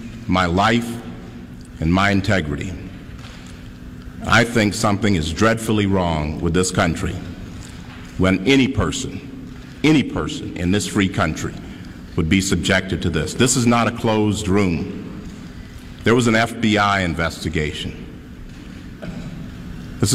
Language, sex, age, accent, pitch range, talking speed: English, male, 50-69, American, 85-105 Hz, 120 wpm